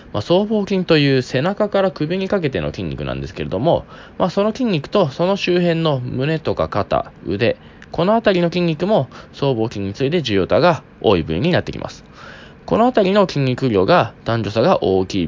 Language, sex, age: Japanese, male, 20-39